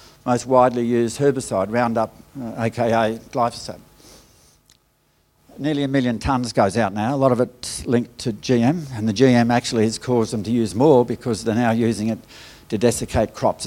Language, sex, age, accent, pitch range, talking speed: English, male, 60-79, Australian, 115-145 Hz, 175 wpm